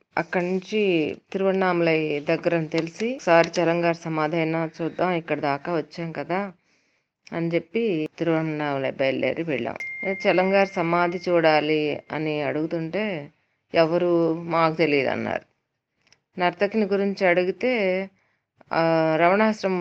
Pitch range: 150-185 Hz